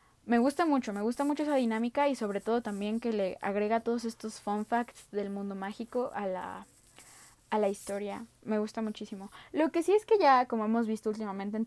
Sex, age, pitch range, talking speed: female, 20-39, 195-235 Hz, 210 wpm